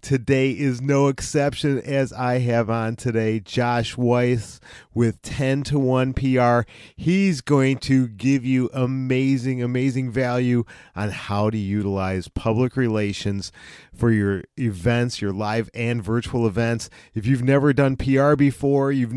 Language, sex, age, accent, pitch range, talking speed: English, male, 40-59, American, 120-160 Hz, 140 wpm